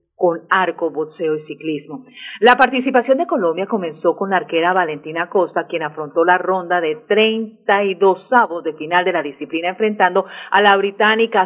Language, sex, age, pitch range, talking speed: Spanish, female, 40-59, 175-225 Hz, 160 wpm